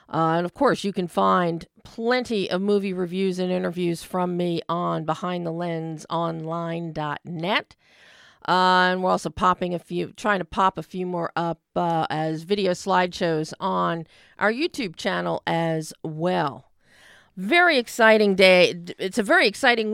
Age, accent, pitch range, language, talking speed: 50-69, American, 160-195 Hz, English, 145 wpm